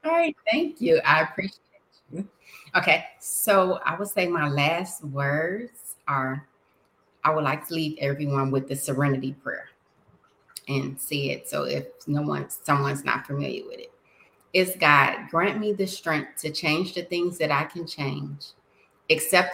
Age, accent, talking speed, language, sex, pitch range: 30-49, American, 165 wpm, English, female, 145-200 Hz